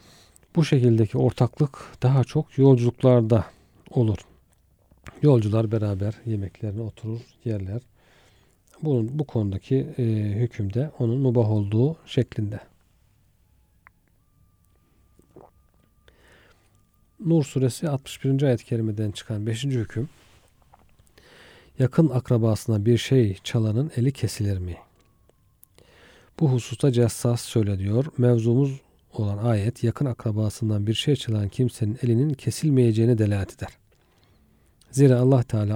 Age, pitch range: 40-59, 105-125 Hz